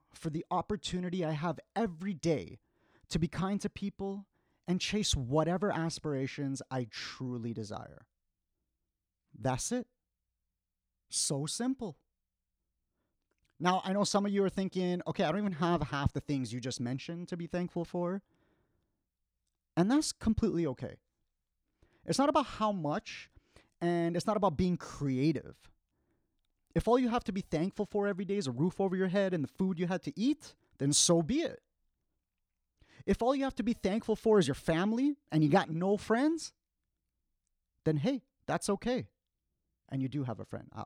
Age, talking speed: 30-49, 165 wpm